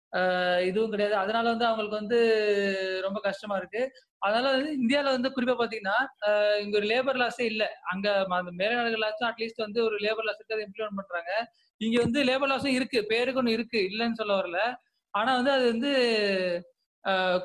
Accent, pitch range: native, 200-245 Hz